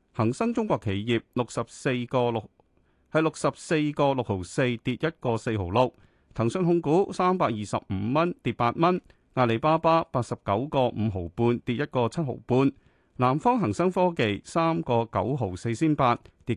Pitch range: 110-155 Hz